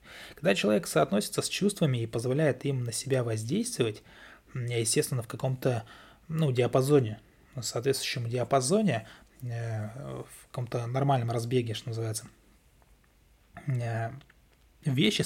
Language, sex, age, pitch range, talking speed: Russian, male, 20-39, 115-150 Hz, 100 wpm